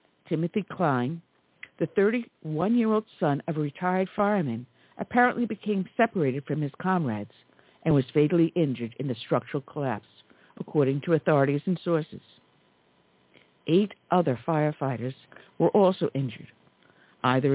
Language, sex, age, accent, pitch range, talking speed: English, female, 60-79, American, 130-185 Hz, 120 wpm